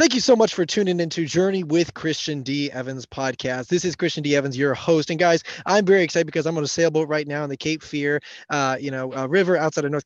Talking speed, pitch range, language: 265 wpm, 145-200 Hz, English